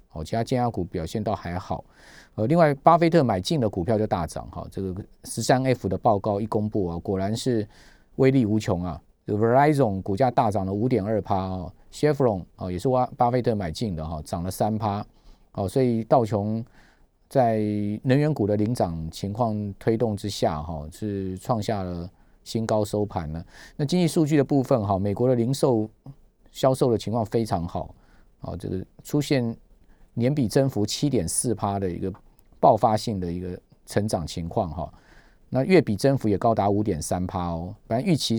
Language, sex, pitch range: Chinese, male, 95-125 Hz